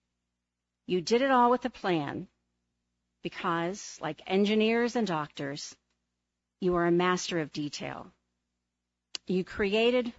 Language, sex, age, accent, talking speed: English, female, 50-69, American, 120 wpm